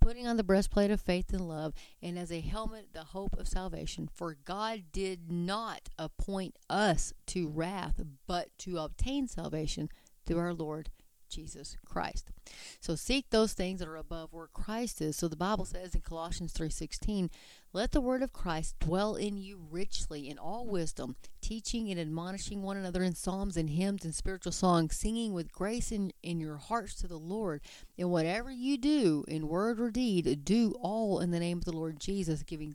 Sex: female